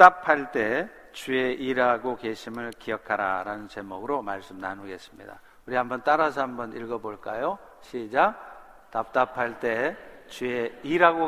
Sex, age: male, 50-69